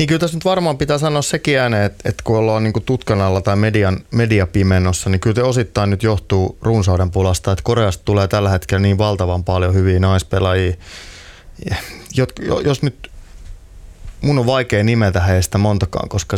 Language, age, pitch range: Finnish, 20-39, 95-110 Hz